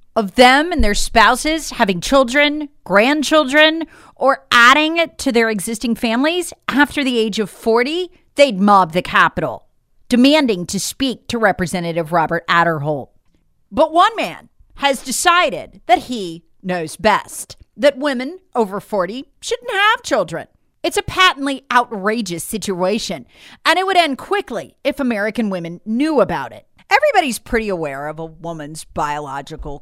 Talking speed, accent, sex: 140 wpm, American, female